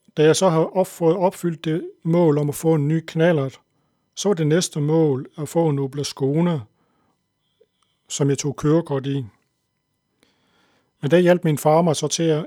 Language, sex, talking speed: Danish, male, 170 wpm